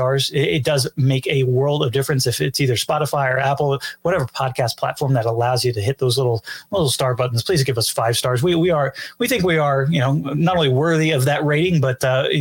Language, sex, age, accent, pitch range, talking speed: English, male, 30-49, American, 130-145 Hz, 235 wpm